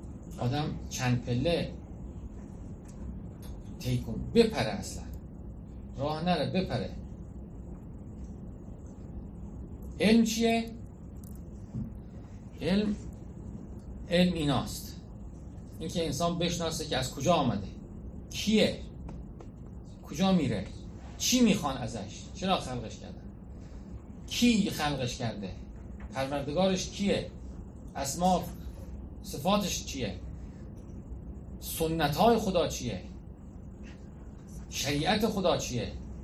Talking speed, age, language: 75 wpm, 50-69, Persian